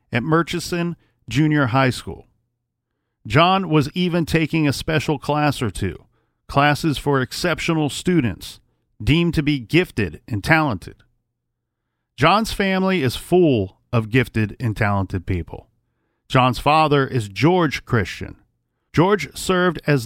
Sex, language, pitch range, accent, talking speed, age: male, English, 120-160 Hz, American, 125 wpm, 40-59